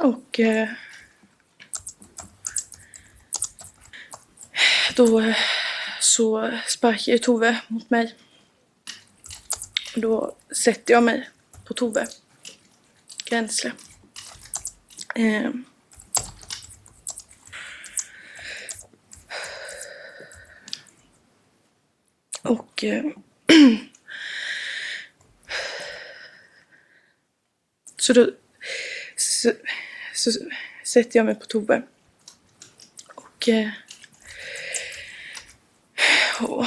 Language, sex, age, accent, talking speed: Swedish, female, 20-39, native, 50 wpm